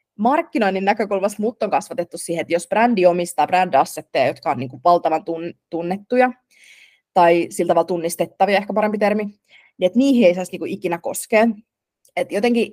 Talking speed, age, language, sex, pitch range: 160 wpm, 20-39, Finnish, female, 175-235 Hz